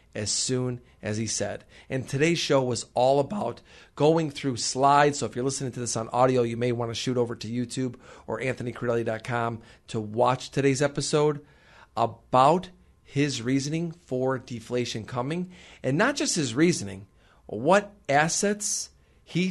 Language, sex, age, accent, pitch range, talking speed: English, male, 40-59, American, 115-155 Hz, 155 wpm